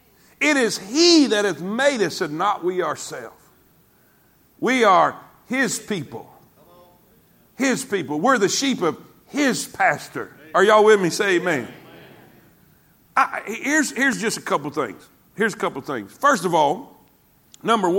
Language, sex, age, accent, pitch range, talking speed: English, male, 50-69, American, 210-275 Hz, 145 wpm